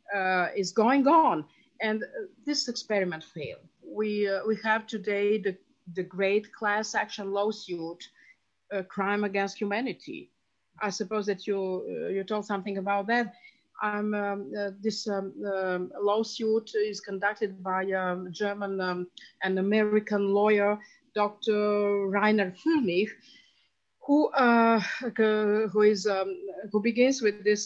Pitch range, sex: 195-230 Hz, female